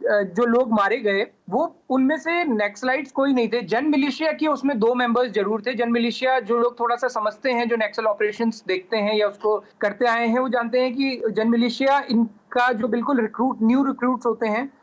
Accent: native